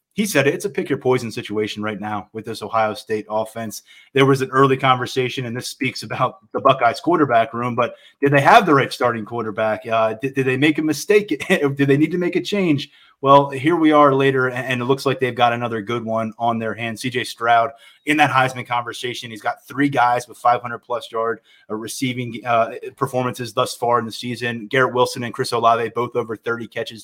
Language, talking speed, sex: English, 210 wpm, male